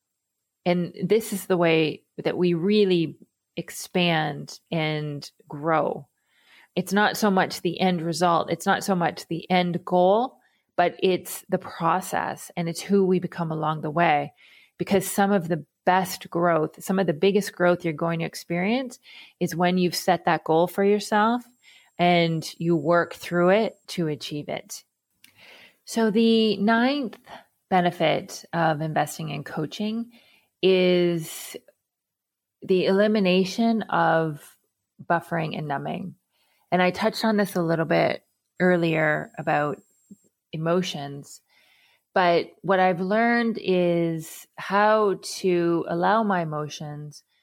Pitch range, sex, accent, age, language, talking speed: 160-195 Hz, female, American, 30-49, English, 130 wpm